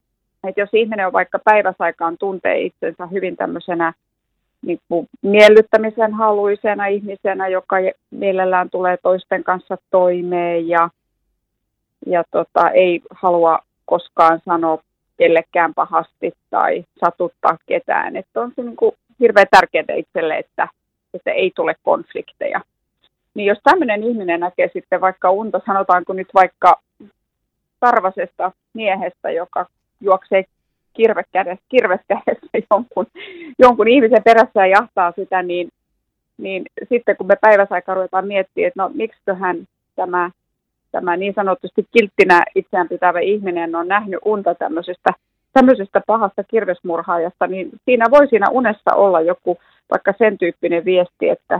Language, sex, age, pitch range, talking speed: Finnish, female, 30-49, 175-215 Hz, 125 wpm